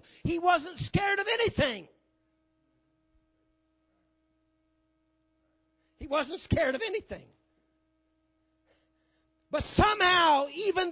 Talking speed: 70 wpm